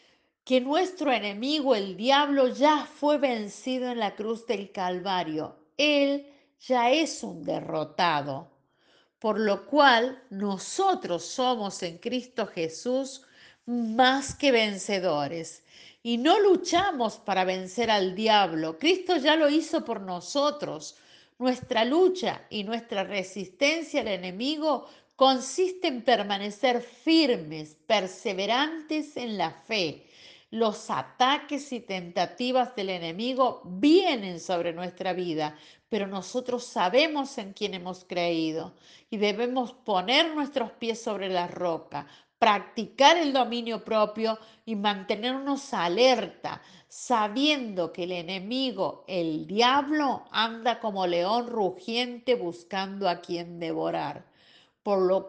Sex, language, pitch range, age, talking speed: female, Spanish, 185-265 Hz, 50-69, 115 wpm